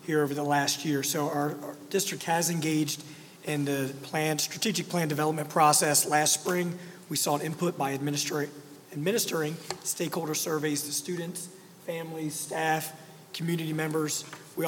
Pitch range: 150-175 Hz